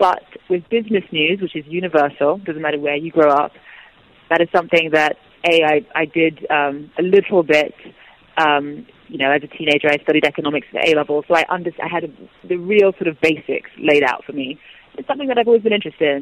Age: 30-49